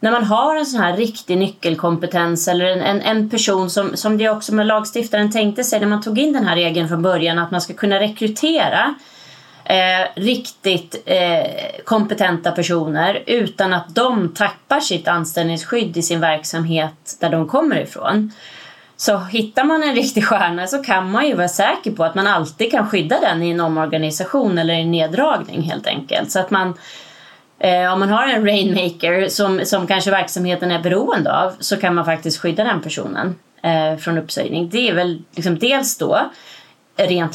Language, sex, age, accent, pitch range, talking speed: Swedish, female, 30-49, native, 170-220 Hz, 180 wpm